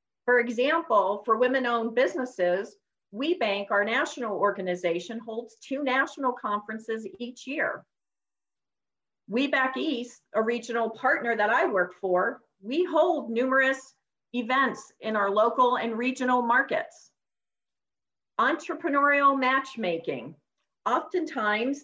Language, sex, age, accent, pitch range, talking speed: English, female, 50-69, American, 215-275 Hz, 100 wpm